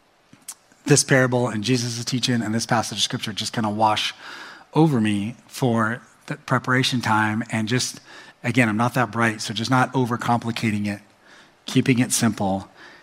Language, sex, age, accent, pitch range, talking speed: English, male, 30-49, American, 110-125 Hz, 160 wpm